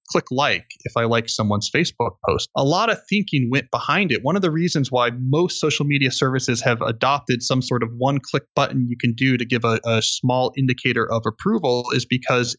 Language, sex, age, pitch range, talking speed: English, male, 30-49, 115-145 Hz, 215 wpm